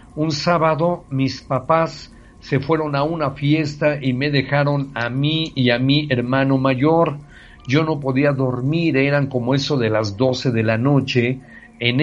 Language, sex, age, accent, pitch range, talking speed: English, male, 50-69, Mexican, 125-155 Hz, 165 wpm